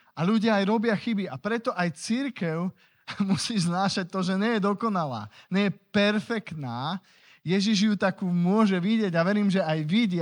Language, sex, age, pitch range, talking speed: Slovak, male, 20-39, 150-195 Hz, 170 wpm